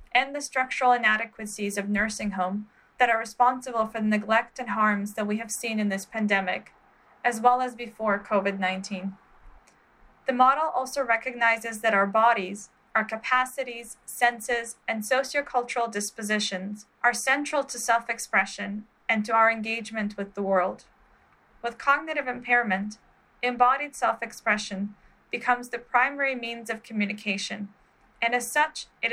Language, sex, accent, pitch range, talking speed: English, female, American, 210-250 Hz, 135 wpm